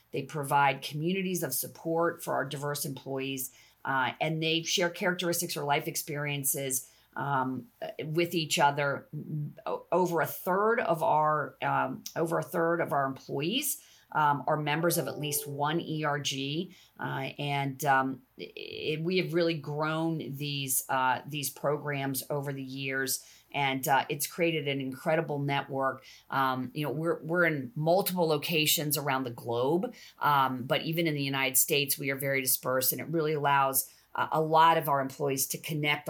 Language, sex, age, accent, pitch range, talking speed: English, female, 40-59, American, 135-160 Hz, 150 wpm